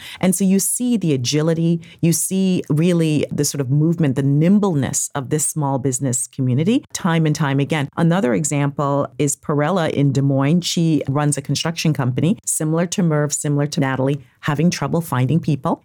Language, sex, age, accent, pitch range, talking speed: English, female, 40-59, American, 140-175 Hz, 175 wpm